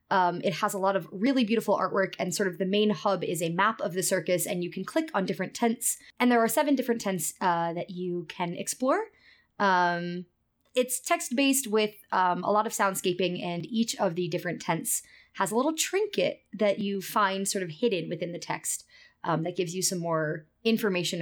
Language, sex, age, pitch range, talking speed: English, female, 20-39, 175-230 Hz, 210 wpm